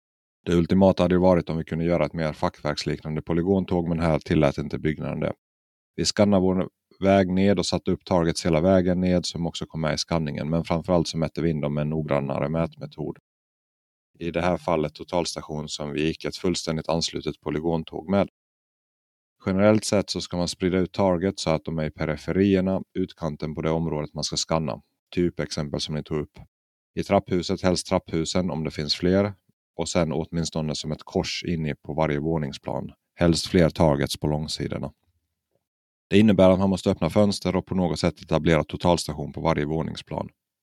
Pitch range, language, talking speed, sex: 75-95 Hz, Swedish, 185 wpm, male